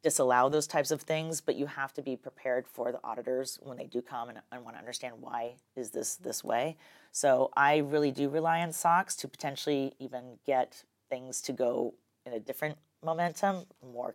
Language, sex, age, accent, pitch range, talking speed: English, female, 40-59, American, 125-160 Hz, 200 wpm